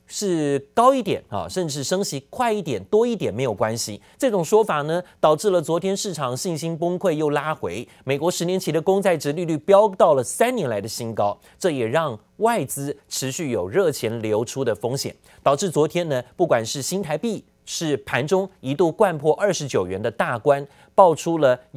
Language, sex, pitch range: Chinese, male, 135-195 Hz